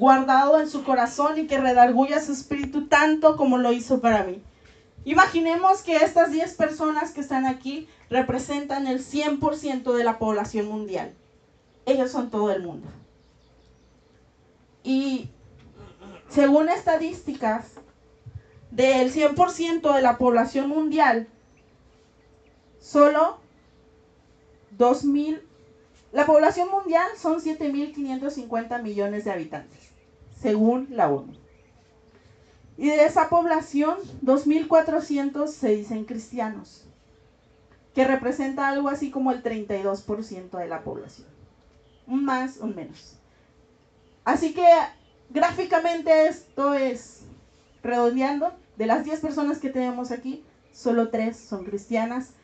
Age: 30-49